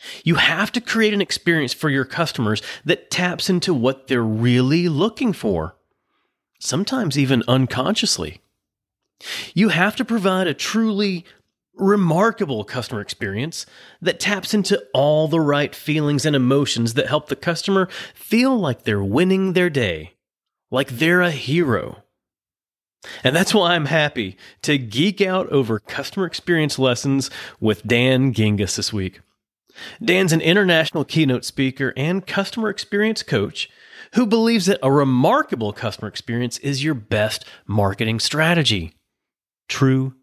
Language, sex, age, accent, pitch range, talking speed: English, male, 30-49, American, 125-190 Hz, 135 wpm